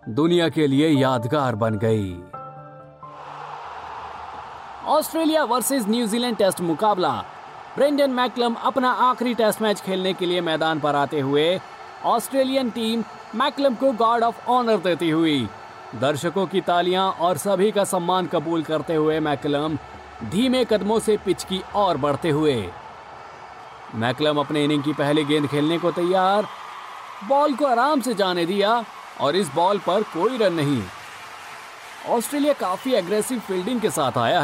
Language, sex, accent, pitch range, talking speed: Hindi, male, native, 150-245 Hz, 100 wpm